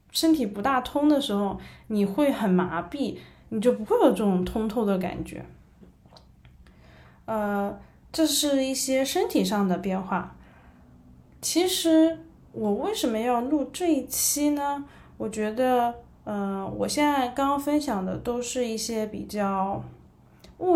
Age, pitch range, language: 20-39, 195-300 Hz, Chinese